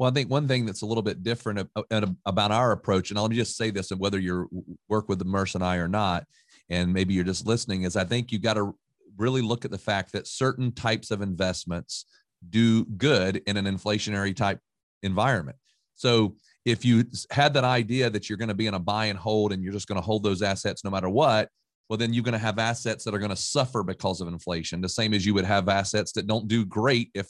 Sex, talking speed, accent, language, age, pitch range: male, 245 wpm, American, English, 40-59, 95-115 Hz